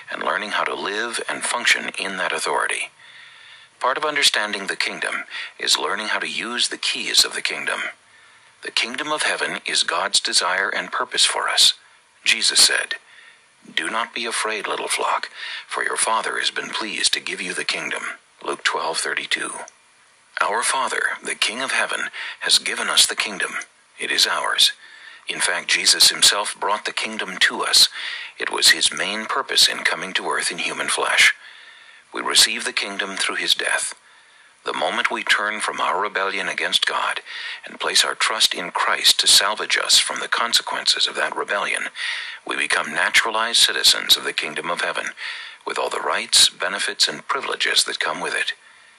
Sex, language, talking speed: male, English, 175 wpm